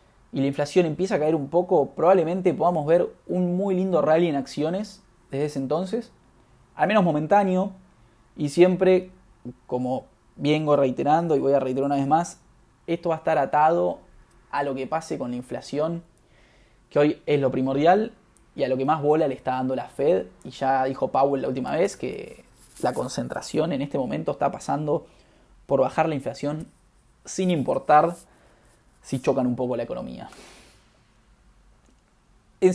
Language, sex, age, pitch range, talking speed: Spanish, male, 20-39, 135-180 Hz, 165 wpm